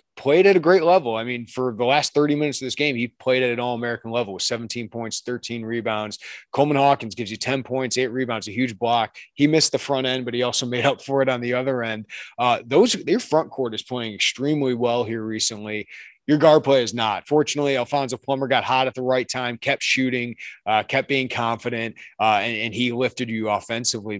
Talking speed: 225 wpm